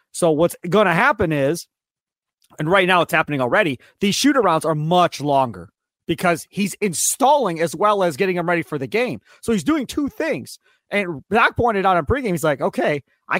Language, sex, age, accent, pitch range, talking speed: English, male, 30-49, American, 165-220 Hz, 195 wpm